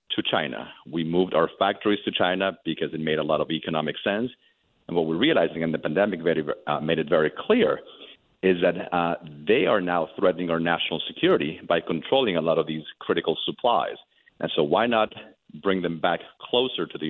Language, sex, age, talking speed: English, male, 40-59, 200 wpm